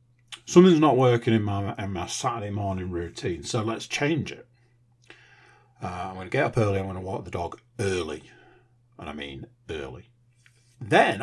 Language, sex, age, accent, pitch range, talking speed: English, male, 50-69, British, 110-125 Hz, 170 wpm